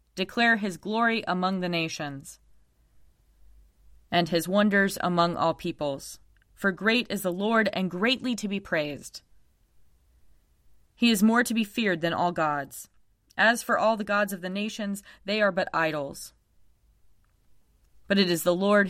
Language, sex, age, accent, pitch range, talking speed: English, female, 20-39, American, 140-225 Hz, 150 wpm